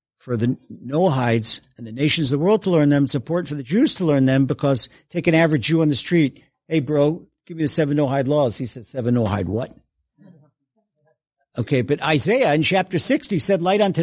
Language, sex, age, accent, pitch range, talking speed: English, male, 50-69, American, 125-180 Hz, 215 wpm